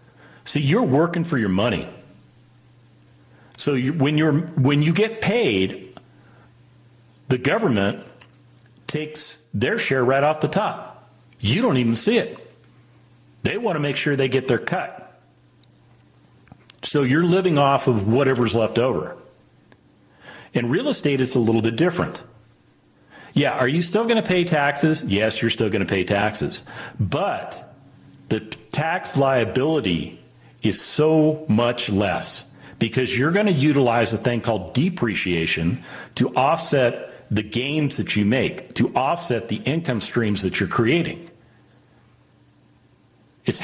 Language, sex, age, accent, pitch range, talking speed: English, male, 40-59, American, 95-150 Hz, 130 wpm